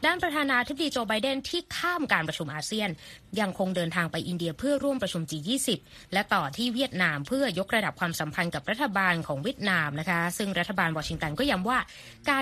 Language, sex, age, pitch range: Thai, female, 20-39, 175-240 Hz